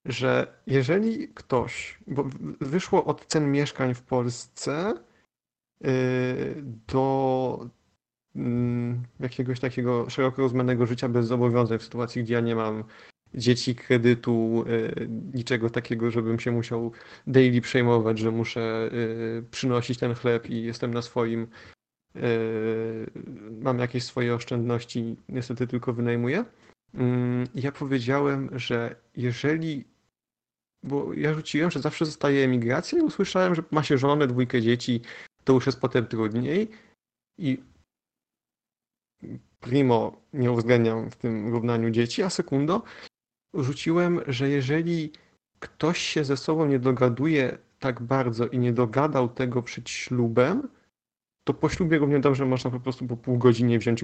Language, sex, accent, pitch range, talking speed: Polish, male, native, 120-140 Hz, 125 wpm